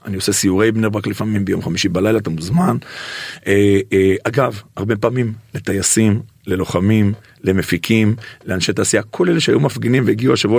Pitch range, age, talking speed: 110-155 Hz, 50-69, 140 wpm